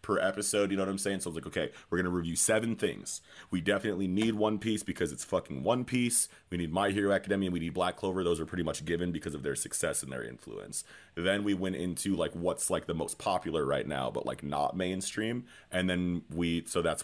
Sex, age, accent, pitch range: male, 30-49, American, 80-100 Hz